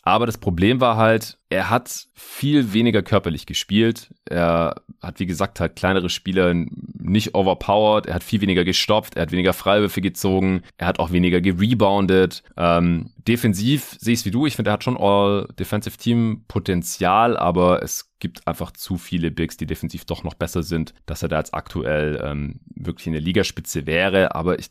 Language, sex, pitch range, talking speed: German, male, 80-105 Hz, 180 wpm